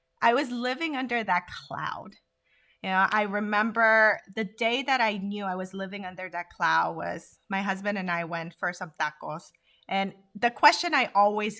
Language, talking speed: English, 180 wpm